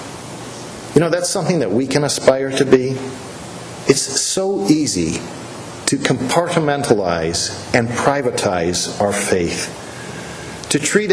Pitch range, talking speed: 115-145 Hz, 115 wpm